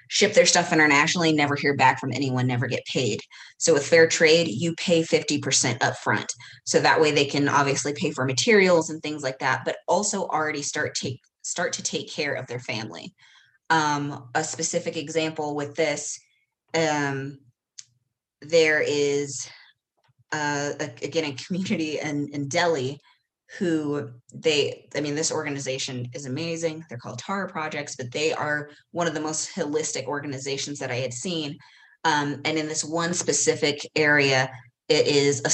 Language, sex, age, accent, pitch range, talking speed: English, female, 20-39, American, 135-160 Hz, 165 wpm